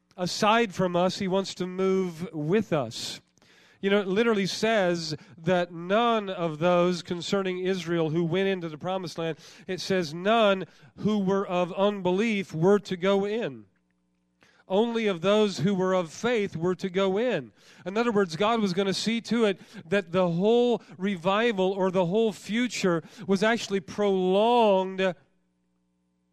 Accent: American